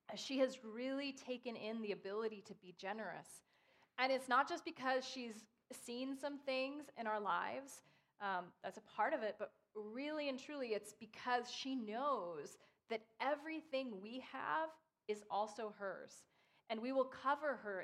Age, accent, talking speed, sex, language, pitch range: 30-49, American, 160 wpm, female, English, 205-270 Hz